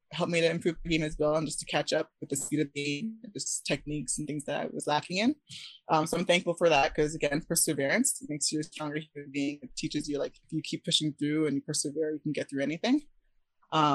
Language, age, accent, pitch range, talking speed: English, 20-39, American, 145-175 Hz, 260 wpm